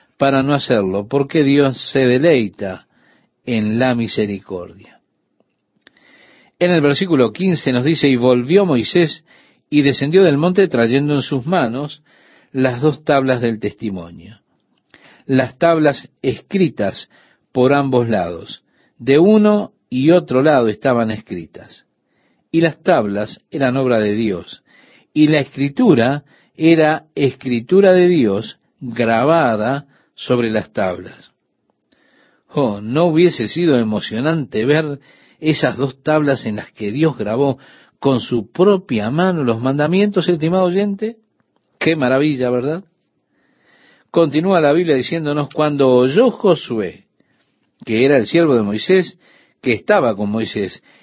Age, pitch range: 50-69, 120-165 Hz